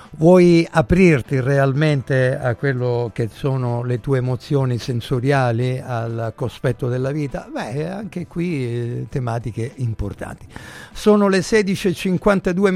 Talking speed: 110 wpm